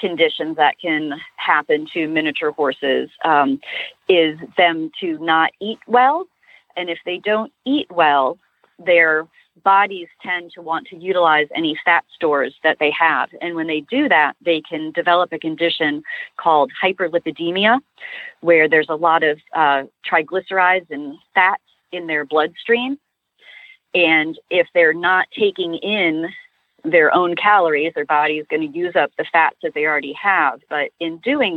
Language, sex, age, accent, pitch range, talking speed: English, female, 30-49, American, 155-230 Hz, 155 wpm